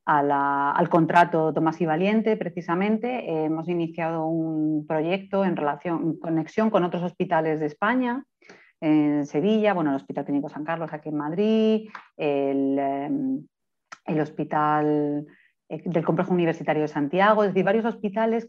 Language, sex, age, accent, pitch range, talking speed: Spanish, female, 40-59, Spanish, 160-210 Hz, 150 wpm